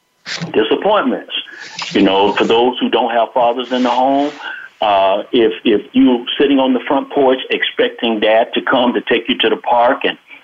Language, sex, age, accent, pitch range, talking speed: English, male, 60-79, American, 105-125 Hz, 185 wpm